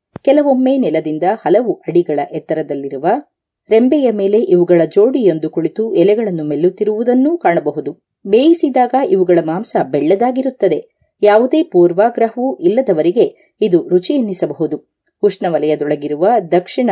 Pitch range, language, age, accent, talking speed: 160-265 Hz, Kannada, 30-49, native, 80 wpm